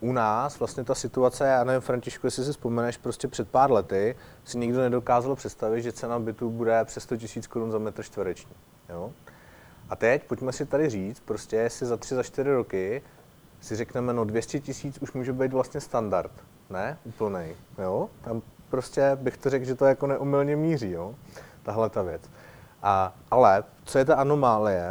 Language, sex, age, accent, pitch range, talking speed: Czech, male, 30-49, native, 110-130 Hz, 180 wpm